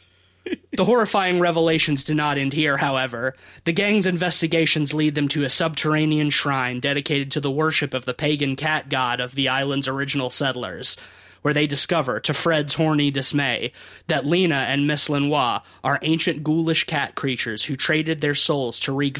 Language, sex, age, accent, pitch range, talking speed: English, male, 20-39, American, 135-160 Hz, 170 wpm